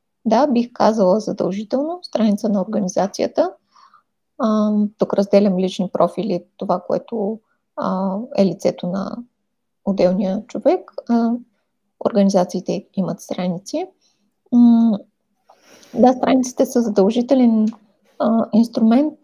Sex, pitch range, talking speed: female, 200-240 Hz, 95 wpm